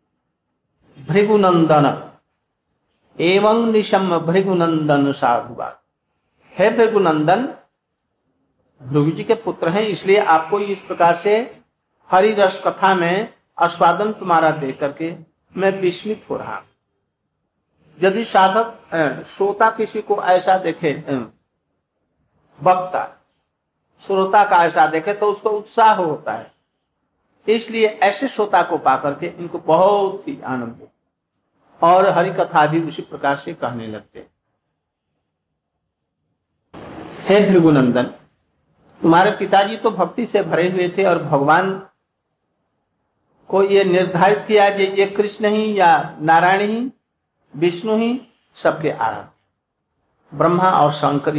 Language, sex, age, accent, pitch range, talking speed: Hindi, male, 60-79, native, 155-205 Hz, 115 wpm